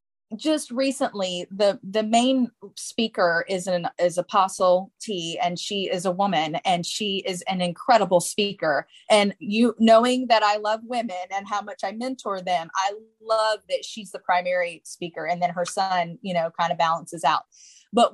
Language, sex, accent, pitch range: English, female, American, 180-225 Hz